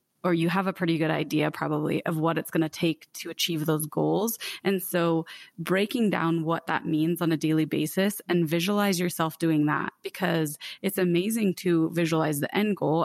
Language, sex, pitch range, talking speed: English, female, 160-185 Hz, 195 wpm